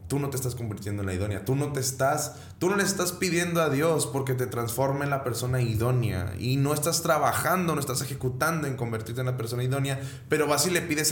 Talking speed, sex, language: 225 wpm, male, Spanish